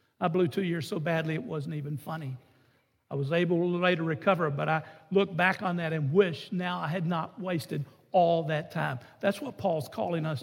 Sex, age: male, 60-79